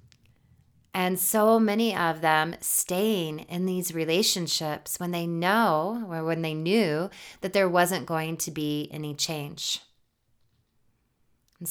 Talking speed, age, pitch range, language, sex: 130 wpm, 20-39, 155-185 Hz, English, female